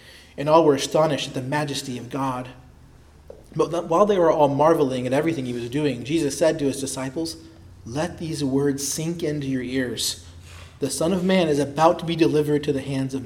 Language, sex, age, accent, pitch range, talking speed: English, male, 30-49, American, 120-160 Hz, 205 wpm